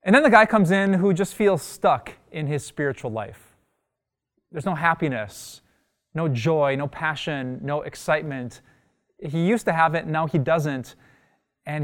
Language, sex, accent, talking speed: English, male, American, 160 wpm